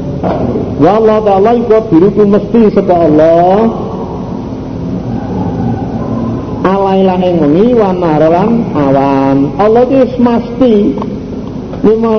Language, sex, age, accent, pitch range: Indonesian, male, 50-69, native, 165-230 Hz